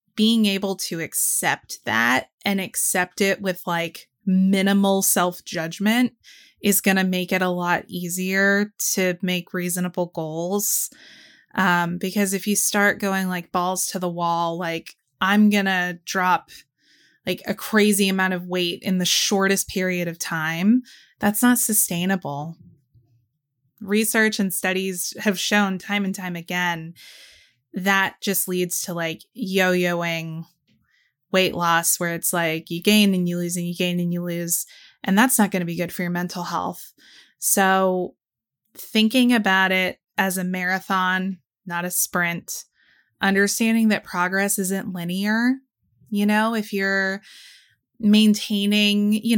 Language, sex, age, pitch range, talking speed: English, female, 20-39, 175-205 Hz, 145 wpm